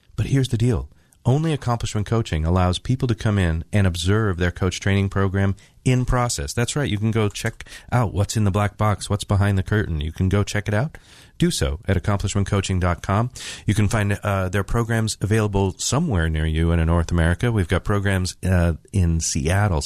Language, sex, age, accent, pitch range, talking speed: English, male, 40-59, American, 85-110 Hz, 200 wpm